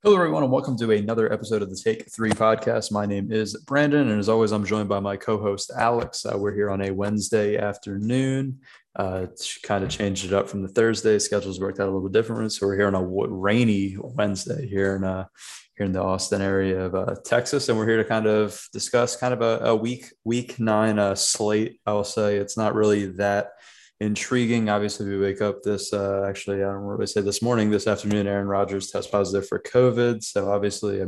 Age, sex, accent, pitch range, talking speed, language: 20-39, male, American, 100-110 Hz, 220 wpm, English